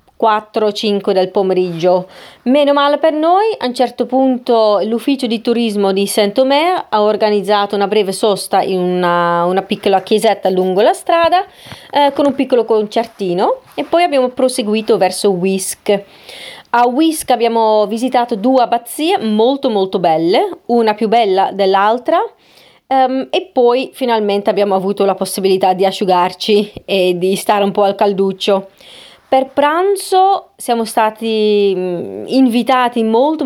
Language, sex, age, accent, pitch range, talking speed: Italian, female, 30-49, native, 200-260 Hz, 140 wpm